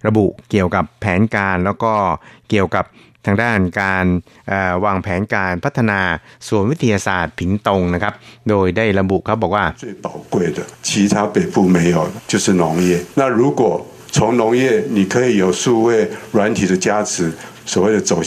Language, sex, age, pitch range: Thai, male, 60-79, 90-110 Hz